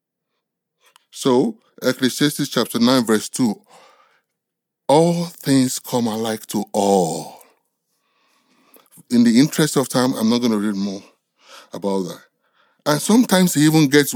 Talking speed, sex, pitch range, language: 125 wpm, male, 115-175 Hz, English